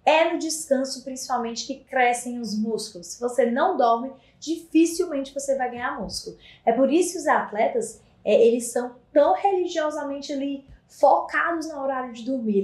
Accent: Brazilian